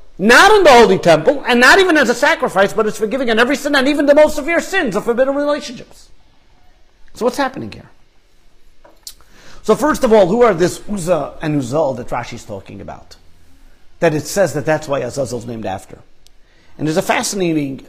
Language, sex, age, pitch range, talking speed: English, male, 50-69, 135-215 Hz, 200 wpm